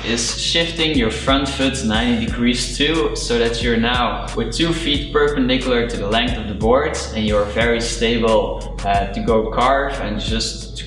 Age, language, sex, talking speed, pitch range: 20-39, English, male, 180 wpm, 115-150 Hz